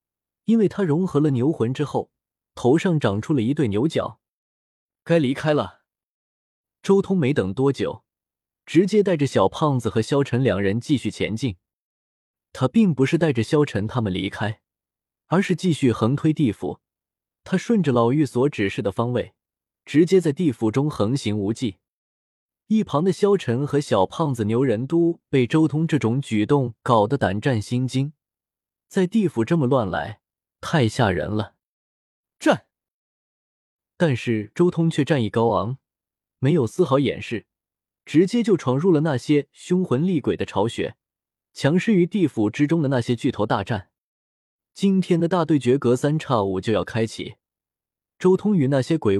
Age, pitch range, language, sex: 20-39, 110-160 Hz, Chinese, male